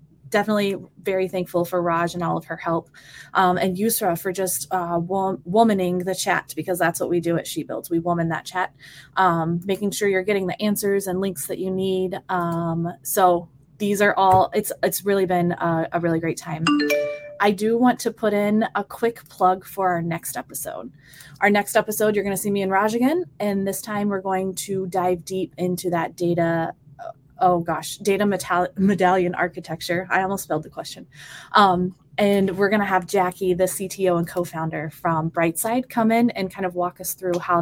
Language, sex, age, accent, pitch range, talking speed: English, female, 20-39, American, 170-200 Hz, 200 wpm